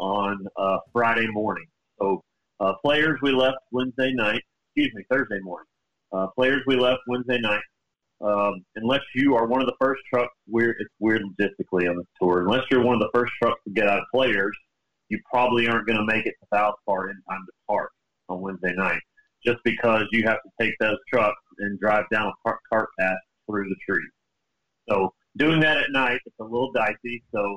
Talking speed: 205 wpm